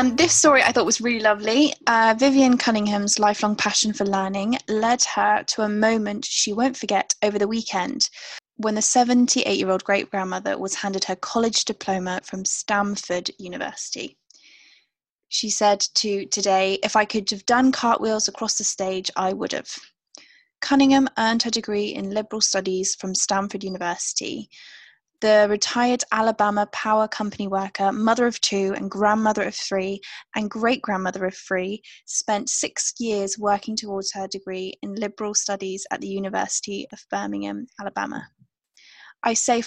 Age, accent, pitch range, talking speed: 10-29, British, 195-230 Hz, 155 wpm